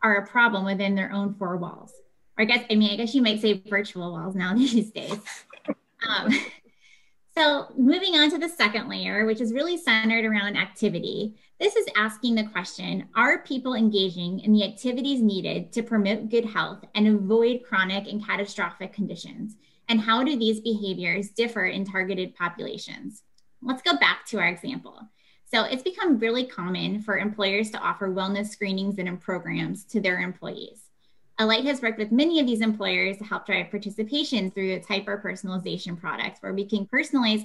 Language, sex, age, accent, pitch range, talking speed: English, female, 10-29, American, 195-235 Hz, 180 wpm